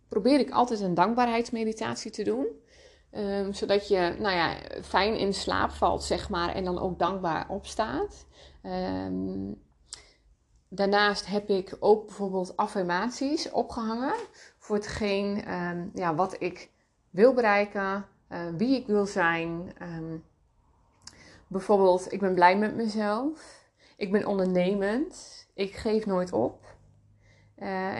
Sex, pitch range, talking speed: female, 175-210 Hz, 105 wpm